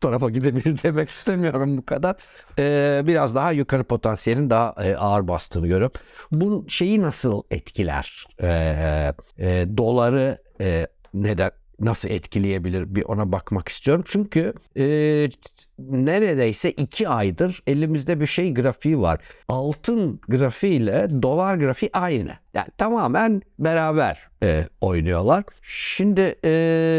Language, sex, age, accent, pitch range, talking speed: Turkish, male, 60-79, native, 95-160 Hz, 120 wpm